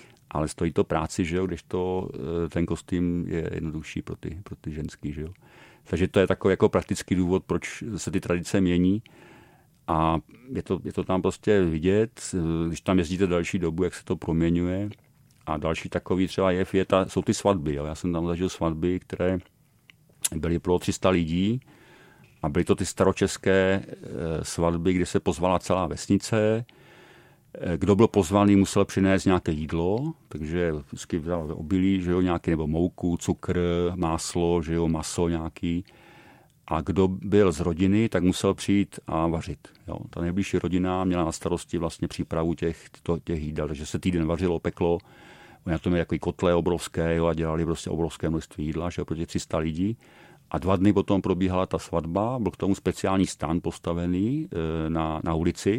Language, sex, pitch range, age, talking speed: Czech, male, 85-95 Hz, 40-59, 175 wpm